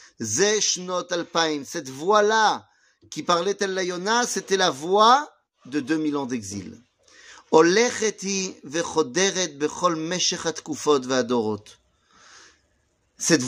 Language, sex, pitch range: French, male, 150-250 Hz